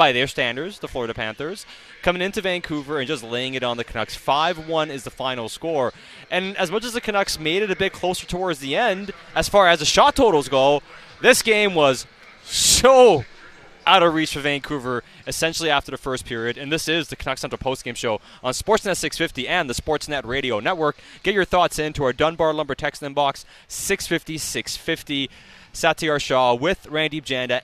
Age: 20-39